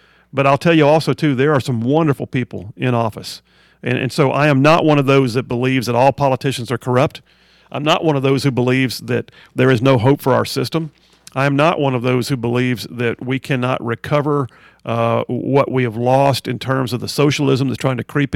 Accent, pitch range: American, 125-155 Hz